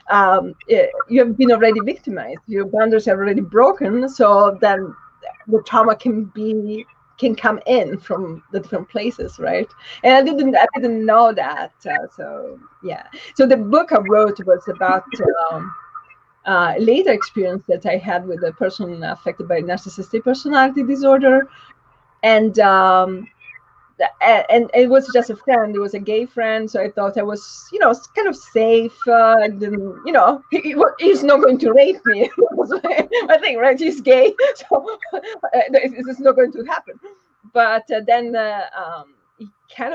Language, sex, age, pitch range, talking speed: English, female, 30-49, 190-270 Hz, 165 wpm